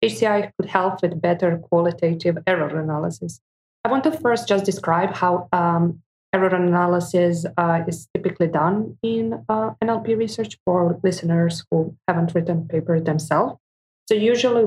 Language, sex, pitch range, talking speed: English, female, 155-185 Hz, 145 wpm